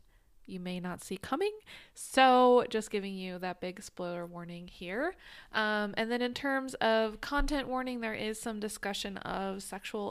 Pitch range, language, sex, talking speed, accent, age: 200-240 Hz, English, female, 165 wpm, American, 20-39